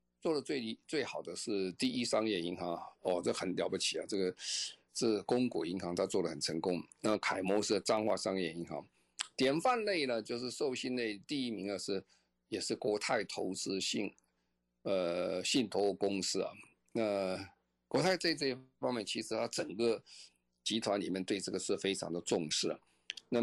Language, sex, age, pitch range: Chinese, male, 50-69, 85-125 Hz